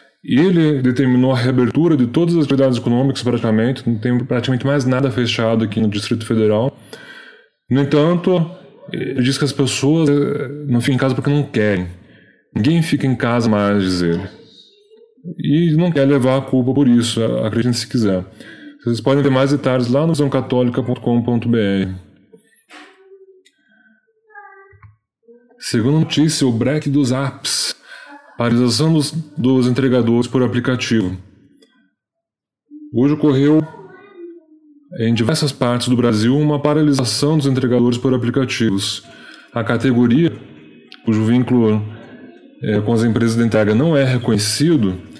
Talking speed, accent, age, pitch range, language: 130 wpm, Brazilian, 10-29, 115-150 Hz, Portuguese